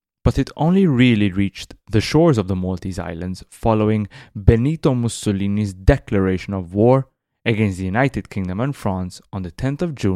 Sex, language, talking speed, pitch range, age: male, English, 165 wpm, 100-135 Hz, 20-39